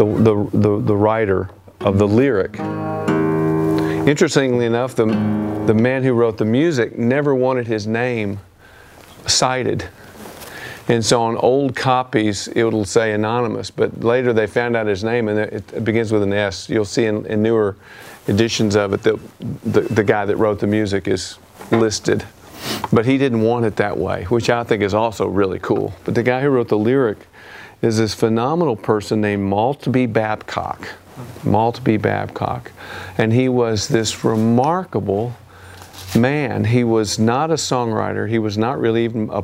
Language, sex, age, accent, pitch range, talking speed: English, male, 50-69, American, 105-120 Hz, 165 wpm